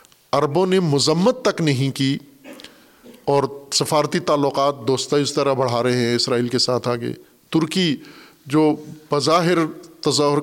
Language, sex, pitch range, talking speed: Urdu, male, 125-155 Hz, 130 wpm